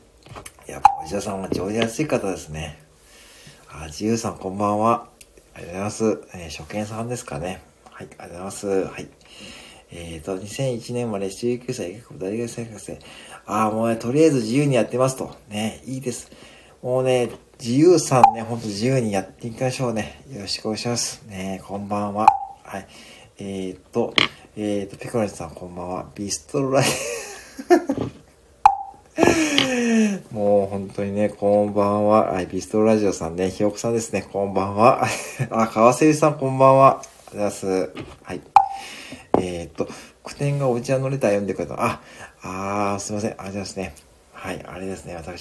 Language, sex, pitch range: Japanese, male, 90-120 Hz